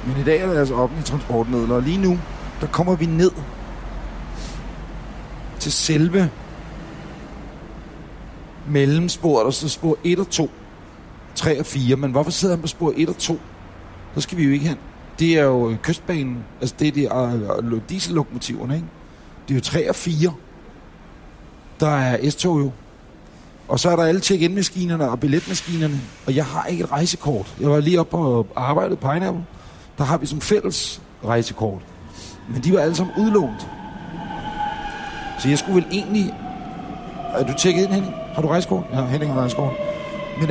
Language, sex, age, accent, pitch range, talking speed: Danish, male, 60-79, native, 130-175 Hz, 175 wpm